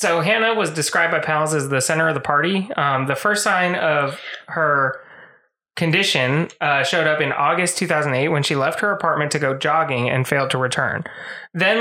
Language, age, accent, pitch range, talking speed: English, 20-39, American, 135-165 Hz, 195 wpm